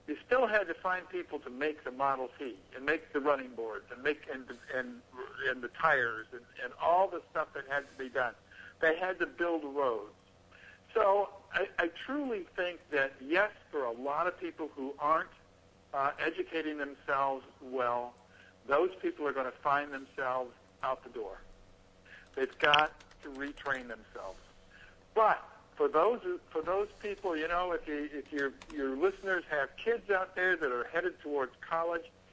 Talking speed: 175 wpm